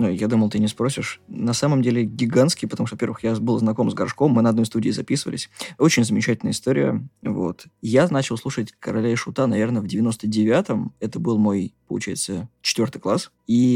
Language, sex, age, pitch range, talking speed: Russian, male, 20-39, 110-135 Hz, 185 wpm